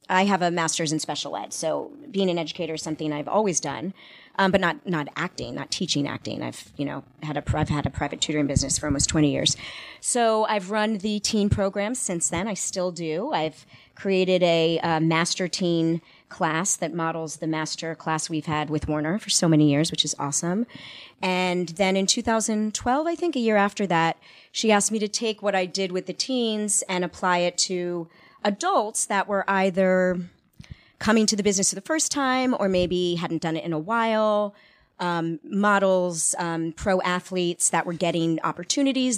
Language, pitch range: English, 155-195 Hz